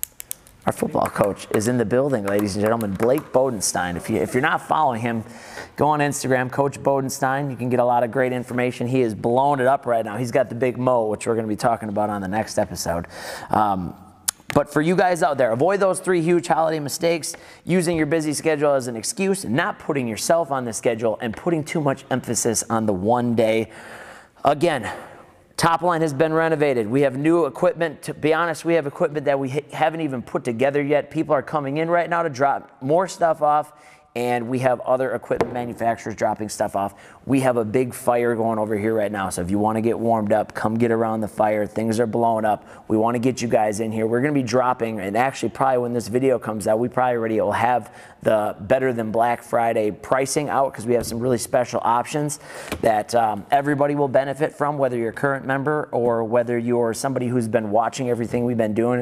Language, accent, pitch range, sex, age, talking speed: English, American, 115-150 Hz, male, 30-49, 220 wpm